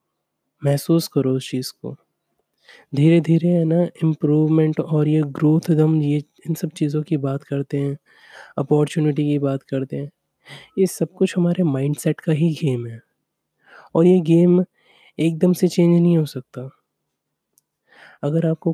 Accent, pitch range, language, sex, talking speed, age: native, 145-170 Hz, Hindi, male, 150 wpm, 20-39